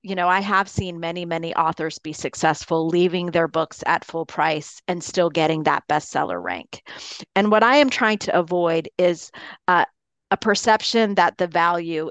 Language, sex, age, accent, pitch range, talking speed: English, female, 40-59, American, 165-195 Hz, 180 wpm